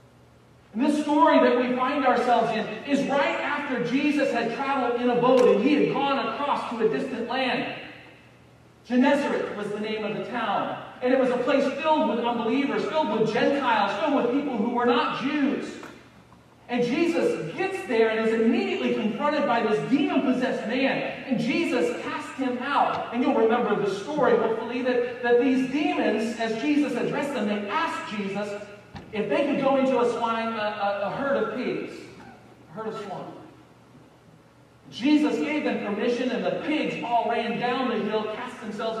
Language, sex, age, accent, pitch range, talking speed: English, male, 40-59, American, 220-275 Hz, 175 wpm